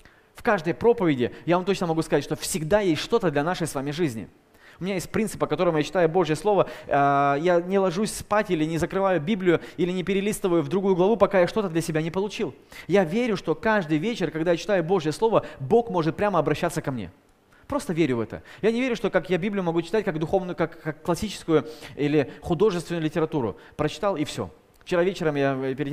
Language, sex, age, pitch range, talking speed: Russian, male, 20-39, 155-195 Hz, 215 wpm